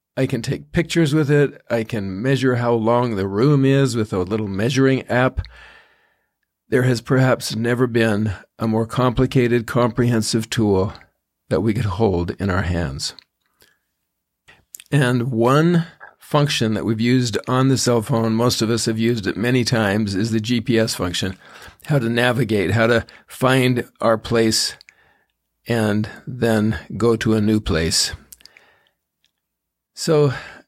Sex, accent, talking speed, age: male, American, 145 wpm, 50-69